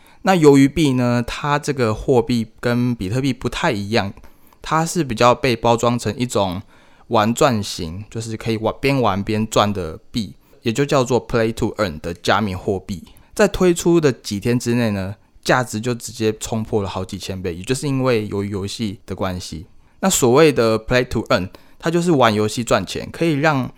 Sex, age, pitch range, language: male, 20-39, 100-125 Hz, Chinese